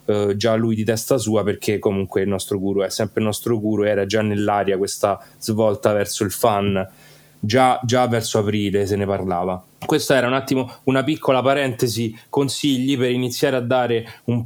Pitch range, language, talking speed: 105-125 Hz, Italian, 180 wpm